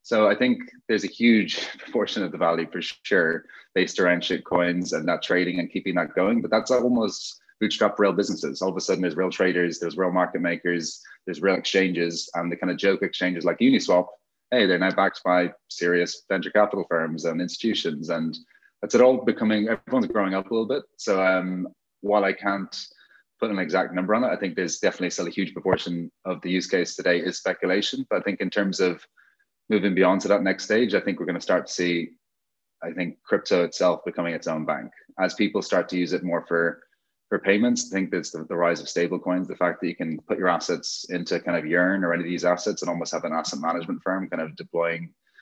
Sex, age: male, 30-49